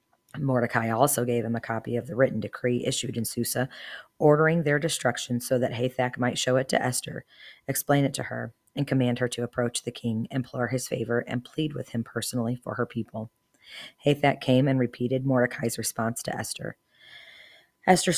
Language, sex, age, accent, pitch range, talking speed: English, female, 40-59, American, 120-135 Hz, 180 wpm